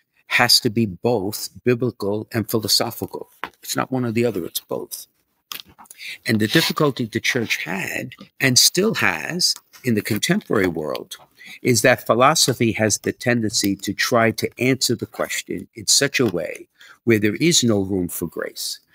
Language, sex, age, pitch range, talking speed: English, male, 50-69, 105-125 Hz, 160 wpm